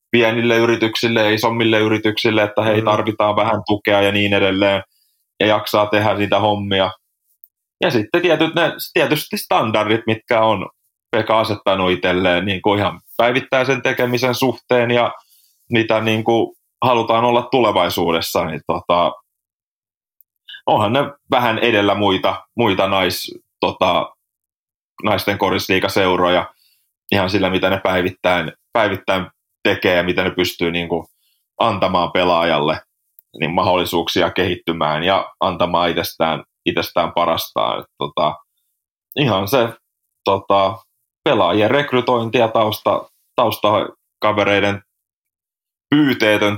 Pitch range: 95-115 Hz